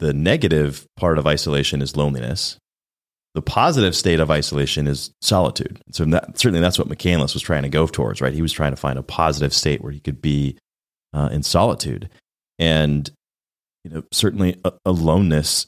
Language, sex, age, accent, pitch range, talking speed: English, male, 30-49, American, 75-90 Hz, 175 wpm